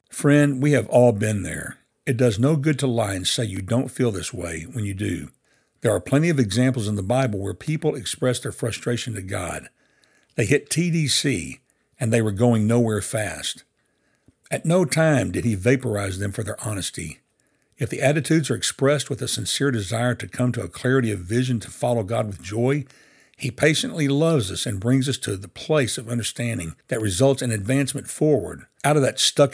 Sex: male